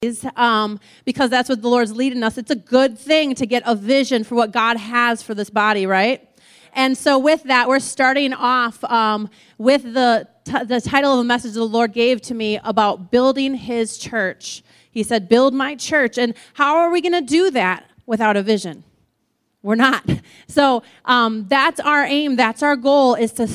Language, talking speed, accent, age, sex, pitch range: English, 195 wpm, American, 30-49, female, 220-270 Hz